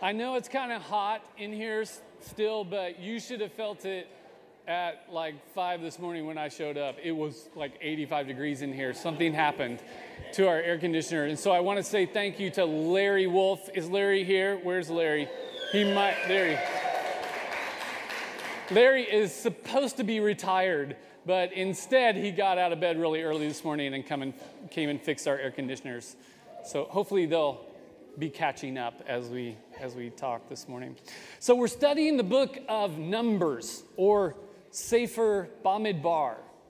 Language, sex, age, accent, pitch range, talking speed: English, male, 30-49, American, 160-215 Hz, 170 wpm